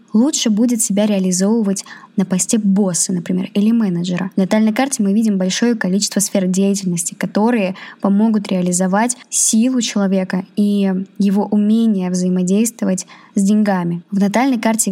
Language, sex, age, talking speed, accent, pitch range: Russian, male, 20-39, 135 wpm, native, 195-225 Hz